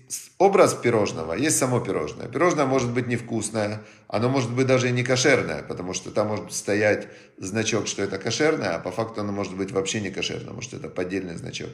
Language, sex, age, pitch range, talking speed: Russian, male, 40-59, 110-140 Hz, 195 wpm